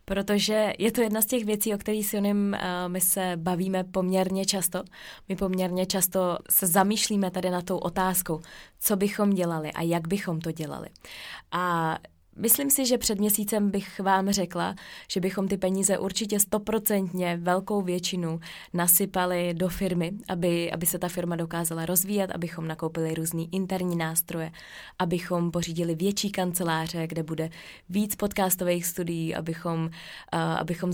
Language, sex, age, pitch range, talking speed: Czech, female, 20-39, 175-195 Hz, 150 wpm